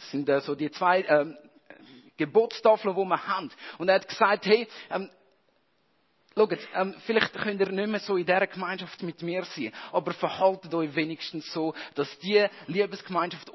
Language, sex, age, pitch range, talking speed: German, male, 50-69, 155-200 Hz, 175 wpm